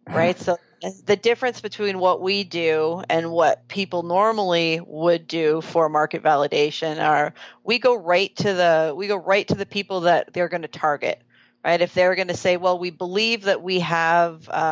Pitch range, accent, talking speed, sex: 165-195 Hz, American, 190 wpm, female